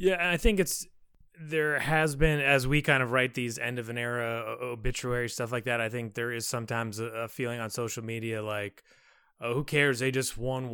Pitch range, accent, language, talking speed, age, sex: 115-140 Hz, American, English, 220 wpm, 30-49, male